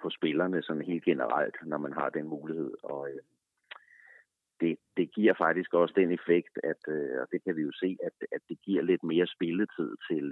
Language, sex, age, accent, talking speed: Danish, male, 30-49, native, 200 wpm